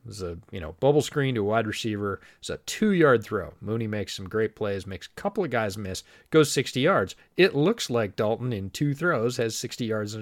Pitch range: 95-125 Hz